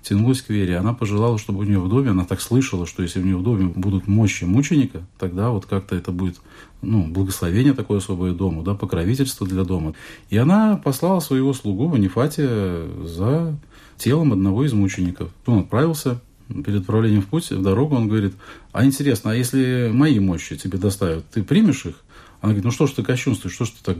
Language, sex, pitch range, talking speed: Russian, male, 95-125 Hz, 200 wpm